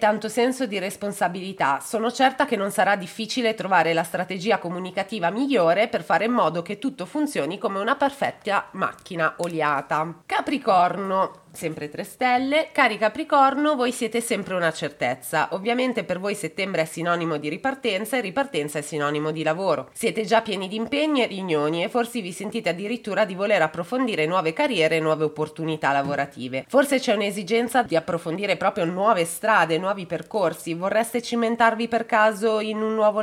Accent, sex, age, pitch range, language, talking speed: native, female, 30-49, 170-240 Hz, Italian, 165 wpm